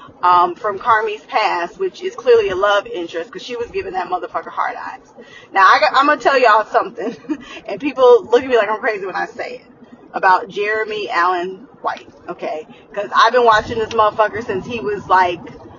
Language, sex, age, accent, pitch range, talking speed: English, female, 20-39, American, 205-300 Hz, 200 wpm